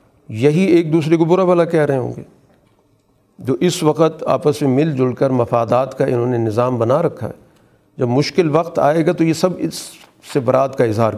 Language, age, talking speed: Urdu, 50-69, 210 wpm